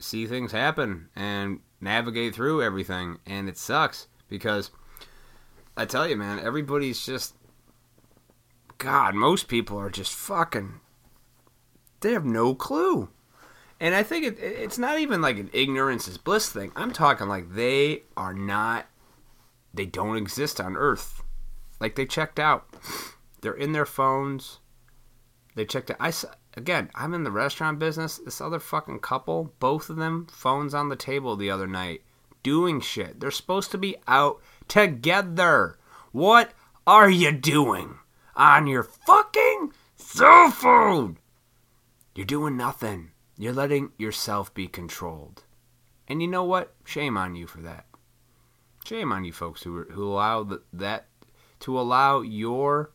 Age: 30-49